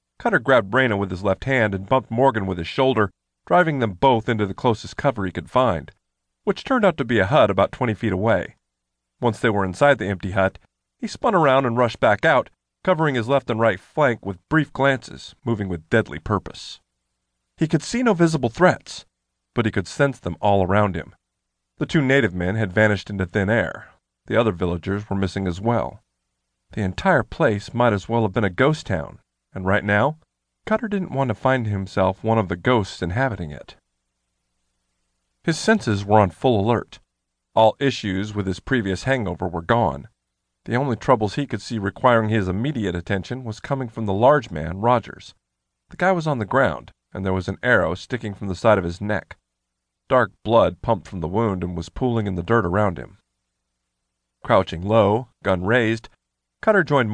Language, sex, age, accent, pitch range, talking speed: English, male, 40-59, American, 90-125 Hz, 195 wpm